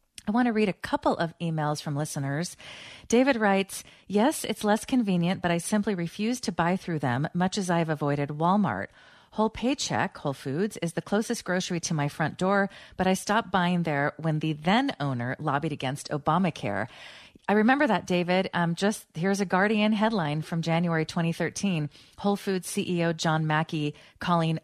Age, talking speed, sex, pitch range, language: 30-49, 175 wpm, female, 150-195 Hz, English